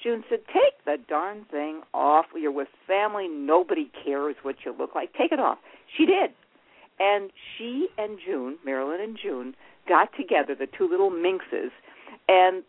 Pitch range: 150-245 Hz